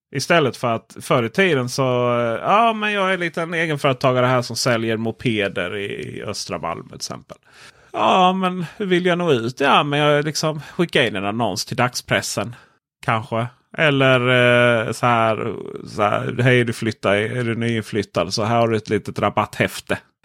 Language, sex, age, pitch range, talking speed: Swedish, male, 30-49, 115-150 Hz, 175 wpm